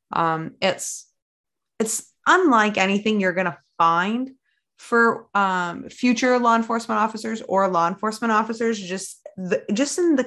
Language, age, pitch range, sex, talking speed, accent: English, 20-39, 165-210 Hz, female, 140 wpm, American